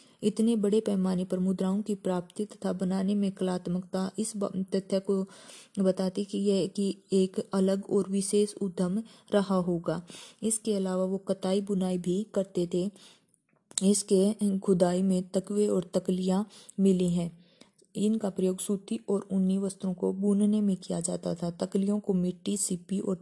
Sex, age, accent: female, 20-39, native